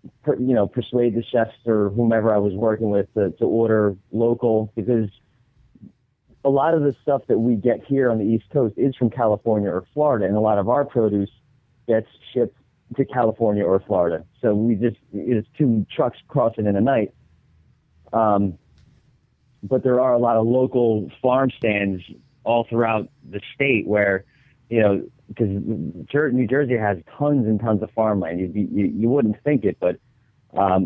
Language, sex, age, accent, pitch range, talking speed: English, male, 40-59, American, 100-120 Hz, 170 wpm